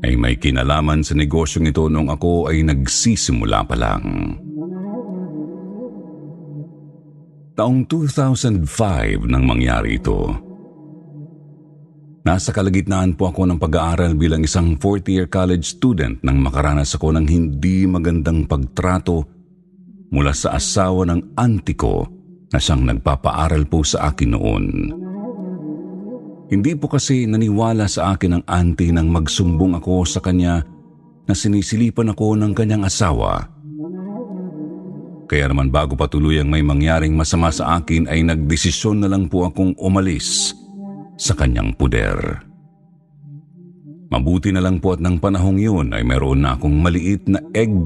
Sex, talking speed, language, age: male, 130 wpm, Filipino, 50-69